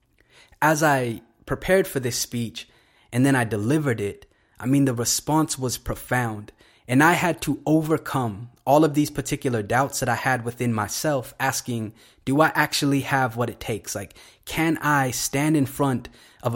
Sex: male